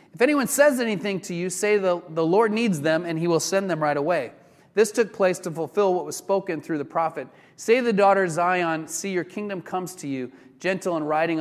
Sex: male